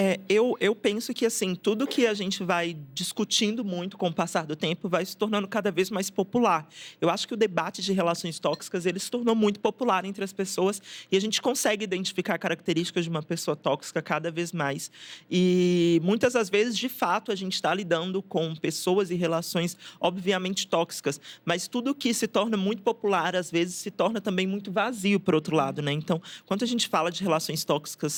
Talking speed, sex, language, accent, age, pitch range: 205 wpm, male, Portuguese, Brazilian, 20-39, 165-200 Hz